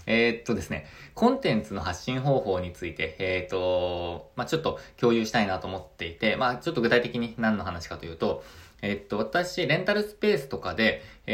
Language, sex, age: Japanese, male, 20-39